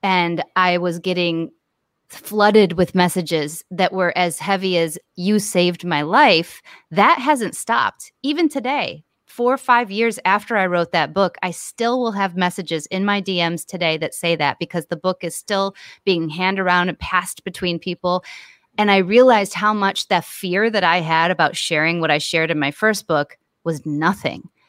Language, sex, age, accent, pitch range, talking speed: English, female, 30-49, American, 170-215 Hz, 180 wpm